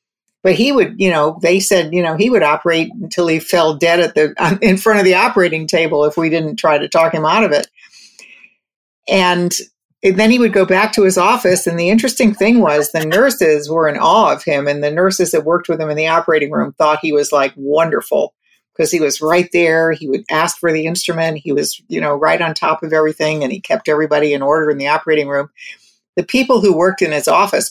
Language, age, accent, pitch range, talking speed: English, 50-69, American, 155-190 Hz, 235 wpm